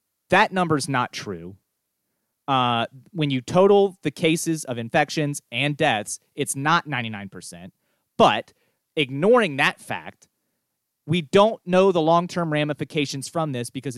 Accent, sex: American, male